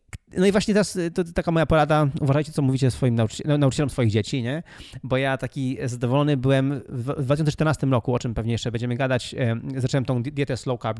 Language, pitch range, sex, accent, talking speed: Polish, 115-155 Hz, male, native, 195 wpm